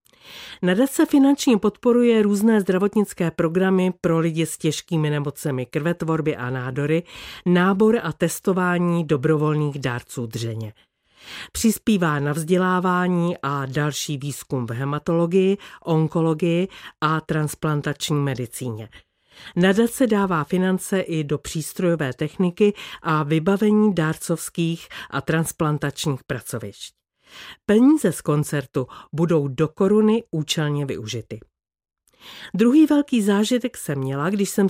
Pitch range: 145-200 Hz